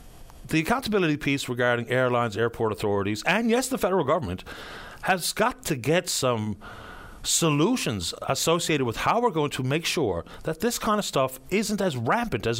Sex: male